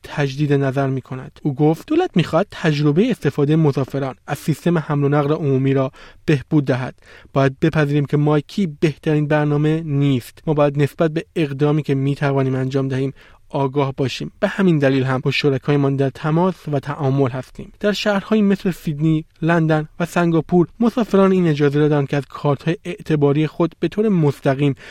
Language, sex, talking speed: Persian, male, 170 wpm